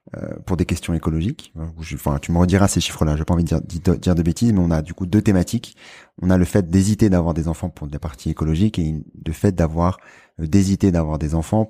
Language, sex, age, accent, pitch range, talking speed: French, male, 30-49, French, 80-95 Hz, 240 wpm